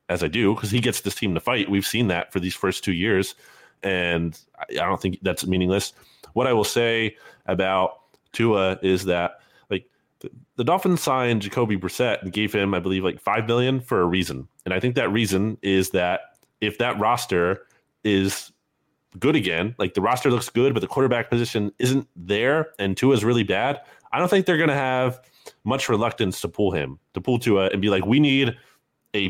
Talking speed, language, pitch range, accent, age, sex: 205 wpm, English, 95-120 Hz, American, 20-39, male